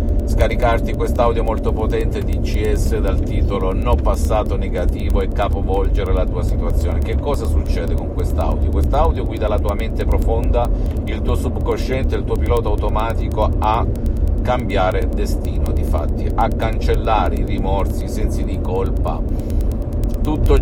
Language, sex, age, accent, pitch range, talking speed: Italian, male, 50-69, native, 75-100 Hz, 140 wpm